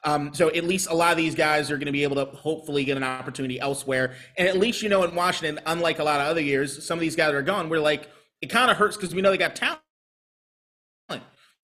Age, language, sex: 30-49, English, male